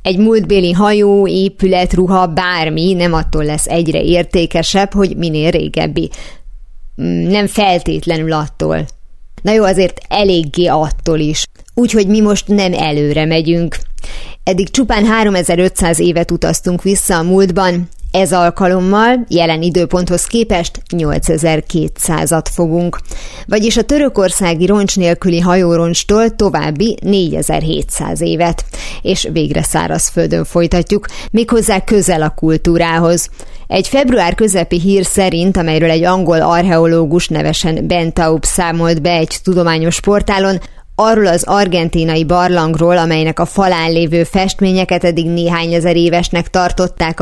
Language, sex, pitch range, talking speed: Hungarian, female, 165-195 Hz, 115 wpm